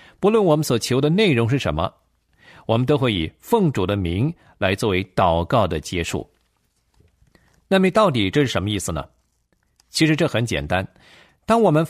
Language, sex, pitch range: Chinese, male, 105-165 Hz